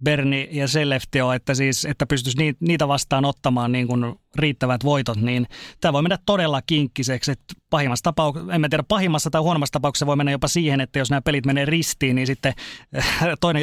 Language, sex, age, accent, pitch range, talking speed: Finnish, male, 30-49, native, 130-155 Hz, 185 wpm